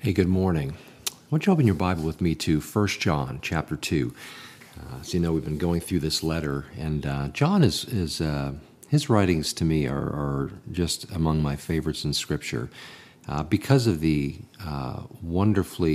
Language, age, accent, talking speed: English, 50-69, American, 190 wpm